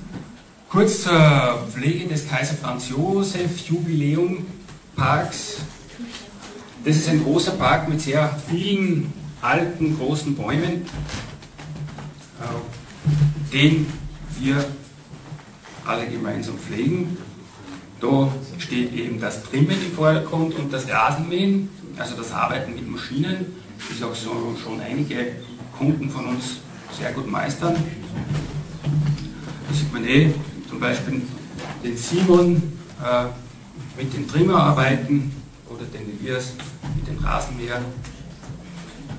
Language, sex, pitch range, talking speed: German, male, 125-165 Hz, 105 wpm